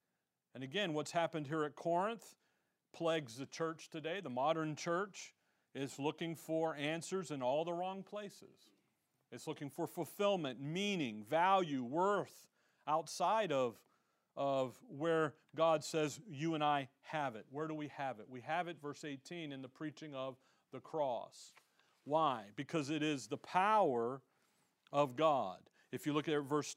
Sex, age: male, 40-59